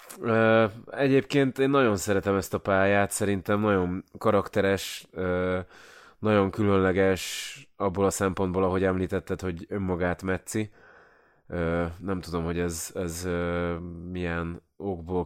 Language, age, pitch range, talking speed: Hungarian, 20-39, 90-105 Hz, 105 wpm